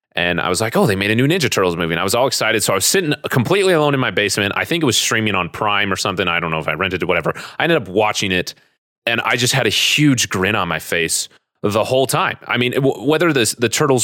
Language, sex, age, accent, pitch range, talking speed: English, male, 30-49, American, 95-135 Hz, 295 wpm